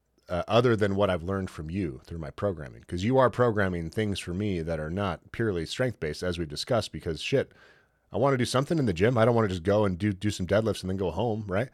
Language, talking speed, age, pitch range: English, 270 wpm, 30-49, 90-110 Hz